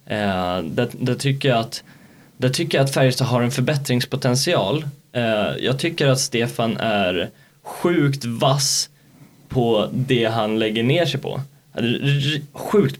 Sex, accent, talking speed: male, native, 130 wpm